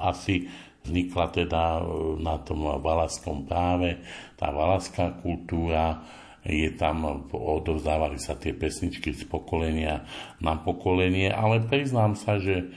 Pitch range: 75-90 Hz